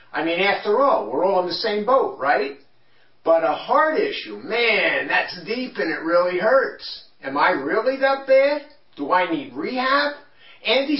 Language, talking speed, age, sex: English, 175 wpm, 50-69, male